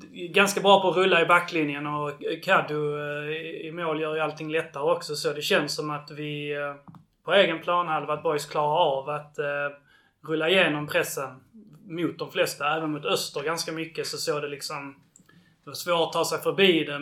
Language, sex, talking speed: Swedish, male, 190 wpm